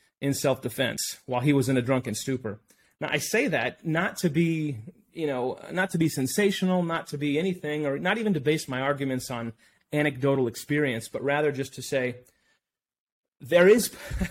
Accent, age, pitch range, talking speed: American, 30-49, 125-155 Hz, 180 wpm